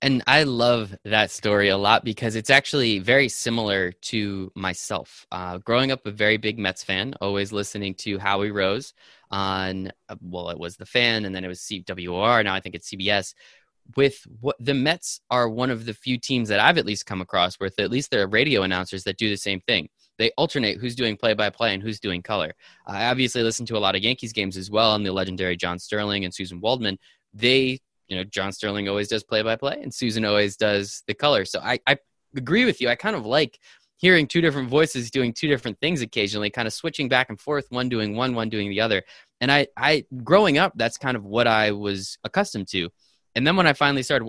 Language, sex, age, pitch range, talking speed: English, male, 20-39, 100-130 Hz, 230 wpm